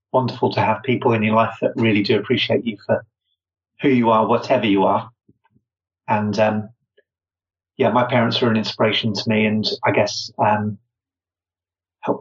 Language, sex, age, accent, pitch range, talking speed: English, male, 30-49, British, 105-130 Hz, 165 wpm